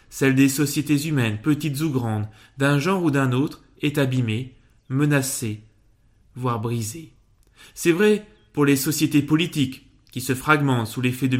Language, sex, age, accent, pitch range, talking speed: French, male, 20-39, French, 120-155 Hz, 155 wpm